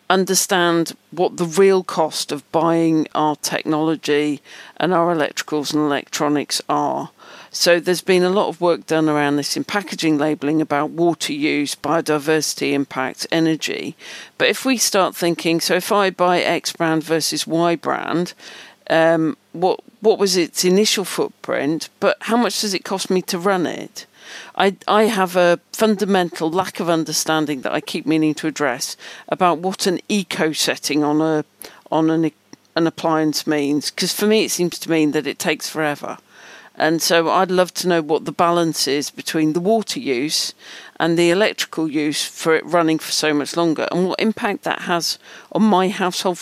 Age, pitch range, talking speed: 50-69, 155-190 Hz, 175 wpm